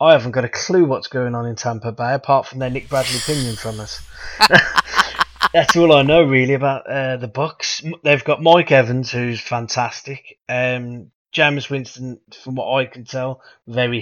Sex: male